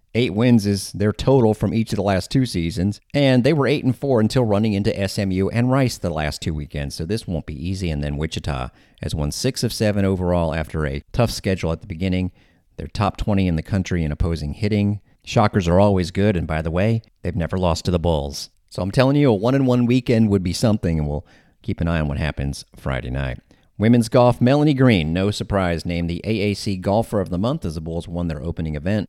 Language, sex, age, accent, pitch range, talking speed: English, male, 40-59, American, 85-105 Hz, 235 wpm